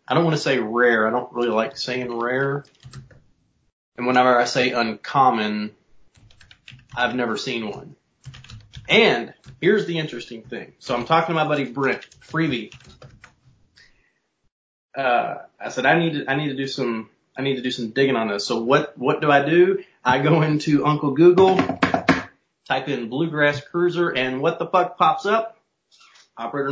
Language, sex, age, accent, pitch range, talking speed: English, male, 30-49, American, 120-145 Hz, 170 wpm